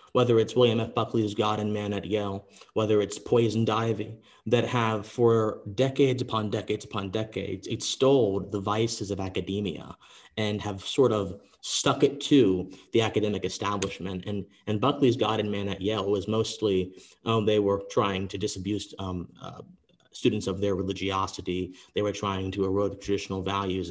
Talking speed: 170 wpm